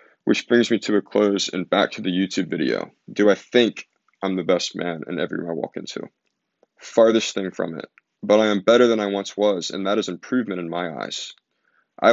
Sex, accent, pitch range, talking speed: male, American, 90-110 Hz, 225 wpm